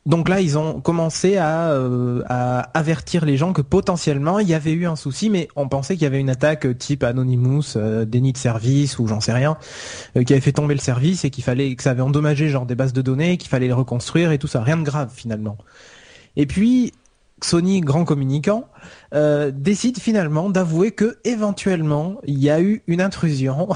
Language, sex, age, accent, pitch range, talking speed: French, male, 20-39, French, 125-165 Hz, 210 wpm